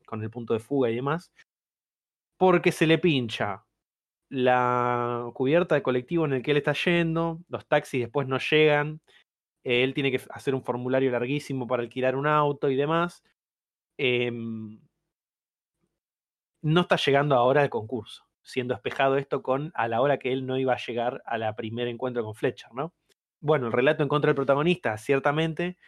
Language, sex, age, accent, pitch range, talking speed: Spanish, male, 20-39, Argentinian, 125-165 Hz, 170 wpm